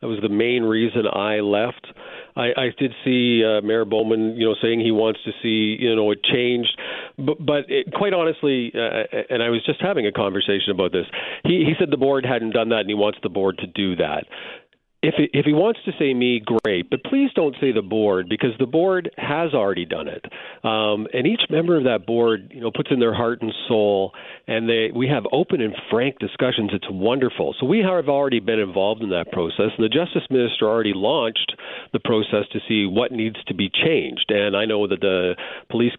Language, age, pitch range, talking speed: English, 40-59, 105-135 Hz, 220 wpm